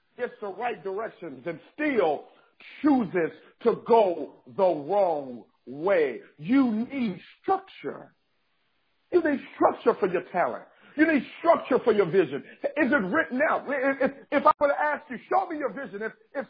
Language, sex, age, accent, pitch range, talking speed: English, male, 50-69, American, 225-290 Hz, 160 wpm